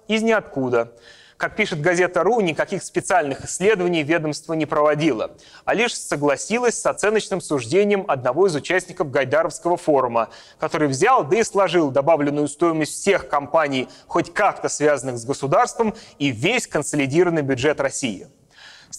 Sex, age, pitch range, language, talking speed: male, 30-49, 135-185 Hz, Russian, 135 wpm